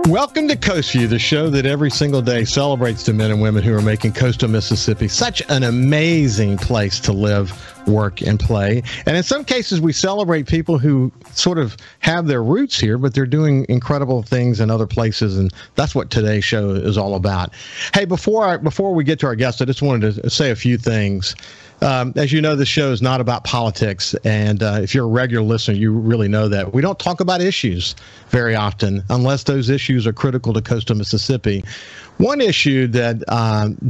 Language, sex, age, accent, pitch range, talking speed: English, male, 50-69, American, 110-140 Hz, 205 wpm